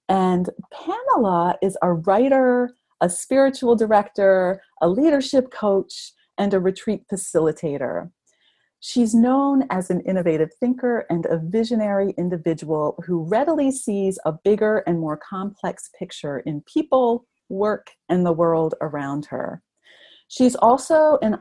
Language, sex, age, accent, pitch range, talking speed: English, female, 40-59, American, 170-235 Hz, 125 wpm